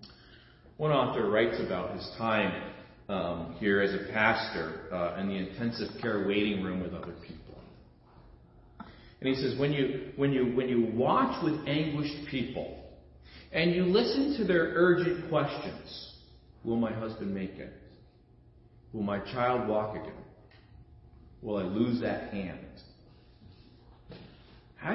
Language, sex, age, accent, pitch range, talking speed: English, male, 40-59, American, 115-175 Hz, 135 wpm